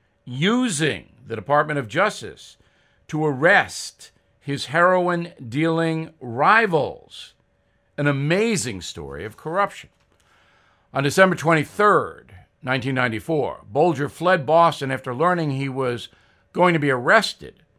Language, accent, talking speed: English, American, 100 wpm